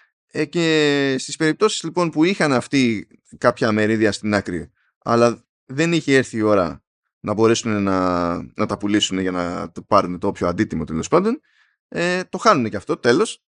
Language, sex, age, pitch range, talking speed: Greek, male, 20-39, 100-155 Hz, 170 wpm